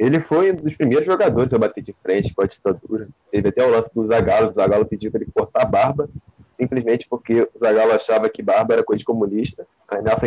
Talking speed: 230 wpm